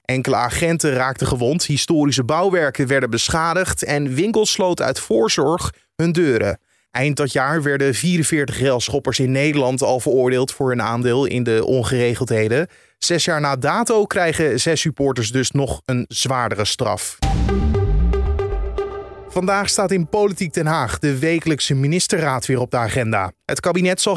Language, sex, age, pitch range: Dutch, male, 30-49, 130-170 Hz